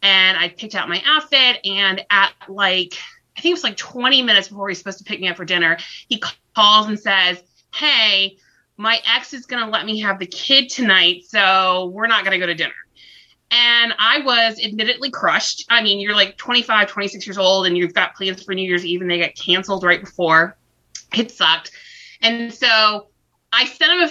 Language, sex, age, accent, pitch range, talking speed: English, female, 30-49, American, 180-230 Hz, 210 wpm